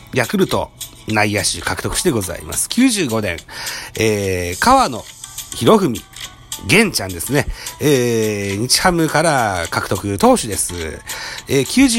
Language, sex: Japanese, male